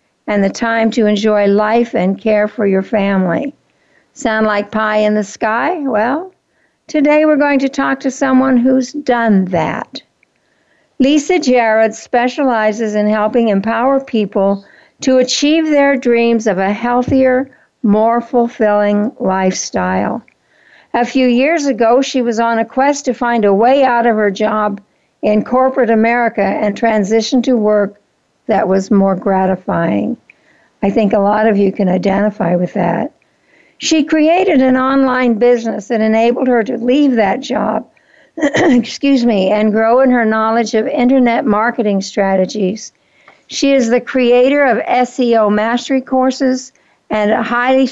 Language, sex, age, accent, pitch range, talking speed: English, female, 60-79, American, 210-260 Hz, 145 wpm